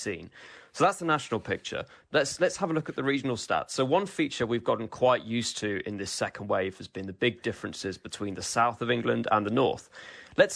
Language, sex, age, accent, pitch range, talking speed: English, male, 20-39, British, 105-130 Hz, 225 wpm